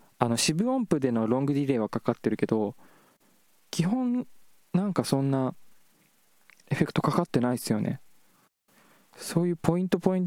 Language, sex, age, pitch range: Japanese, male, 20-39, 110-165 Hz